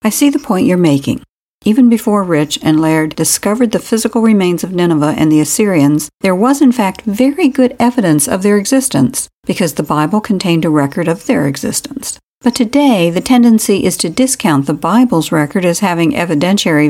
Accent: American